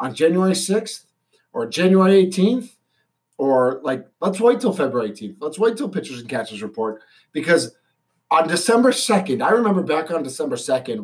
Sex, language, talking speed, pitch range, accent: male, English, 165 wpm, 135-210 Hz, American